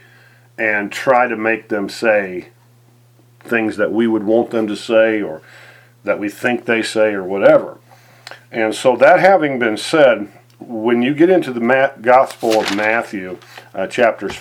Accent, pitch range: American, 105-120 Hz